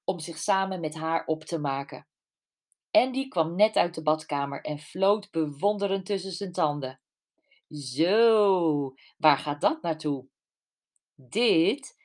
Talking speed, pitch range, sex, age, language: 130 wpm, 155-205 Hz, female, 40-59, Dutch